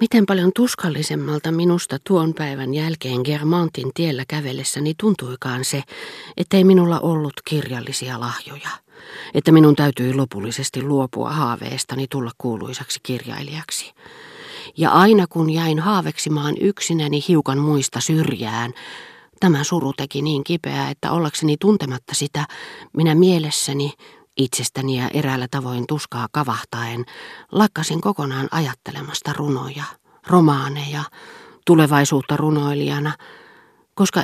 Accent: native